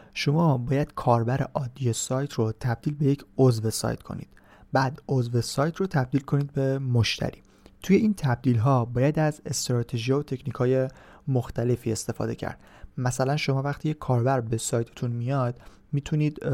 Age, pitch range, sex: 30-49, 120-145 Hz, male